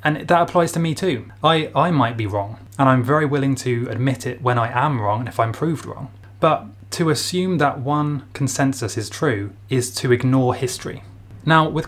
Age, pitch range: 20-39, 115-135 Hz